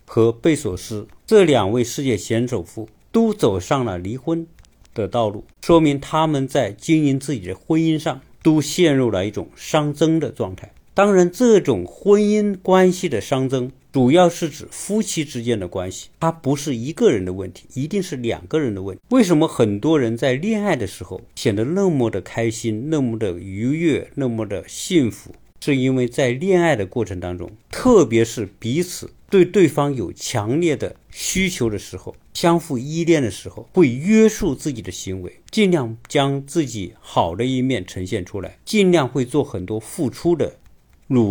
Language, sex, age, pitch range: Chinese, male, 50-69, 110-160 Hz